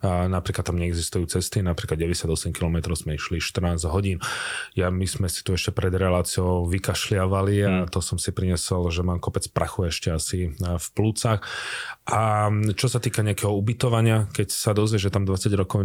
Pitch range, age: 90-105 Hz, 30-49